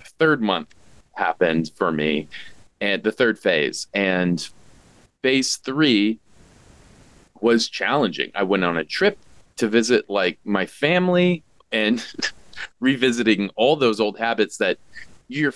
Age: 20-39